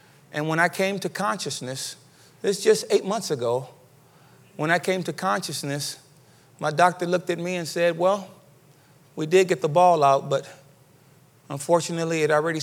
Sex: male